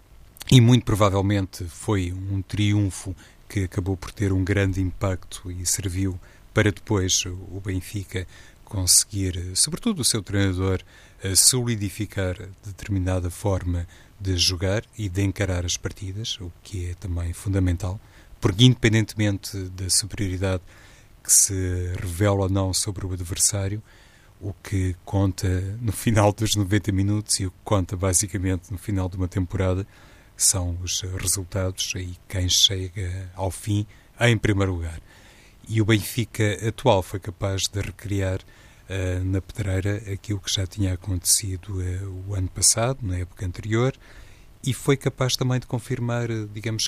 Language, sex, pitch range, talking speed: Portuguese, male, 95-105 Hz, 140 wpm